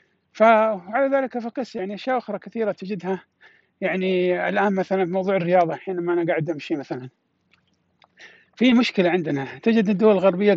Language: Arabic